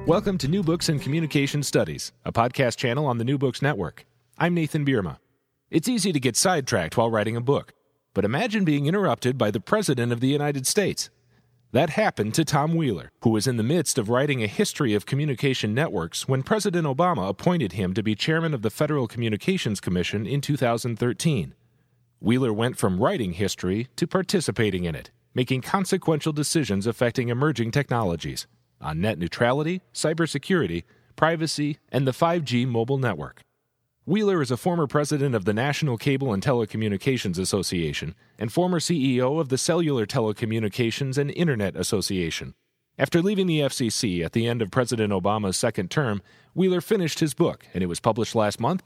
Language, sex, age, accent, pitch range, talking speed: English, male, 40-59, American, 115-160 Hz, 170 wpm